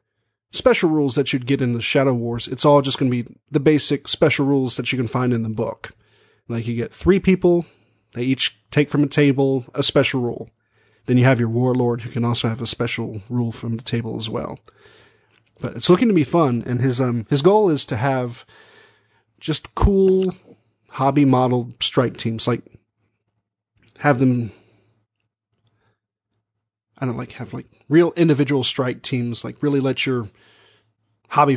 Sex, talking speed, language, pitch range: male, 180 wpm, English, 115-140 Hz